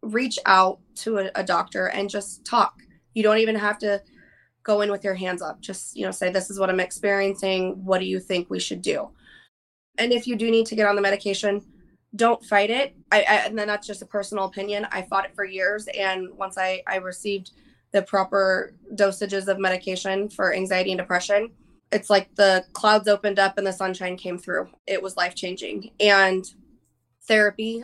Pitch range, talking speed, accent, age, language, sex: 190-215 Hz, 200 wpm, American, 20-39, English, female